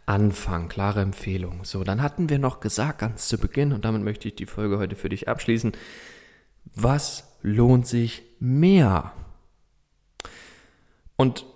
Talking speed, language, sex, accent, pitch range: 140 wpm, German, male, German, 95-125 Hz